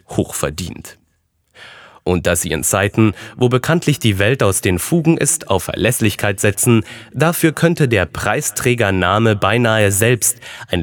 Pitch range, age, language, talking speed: 95-125 Hz, 30-49, German, 135 wpm